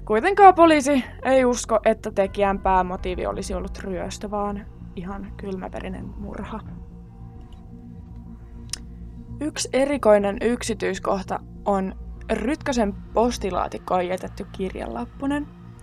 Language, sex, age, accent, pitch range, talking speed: Finnish, female, 20-39, native, 195-270 Hz, 85 wpm